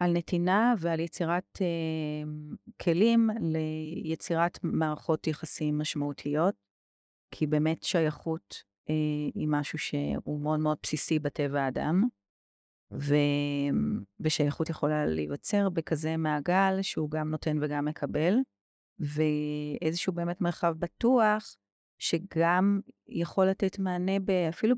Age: 30-49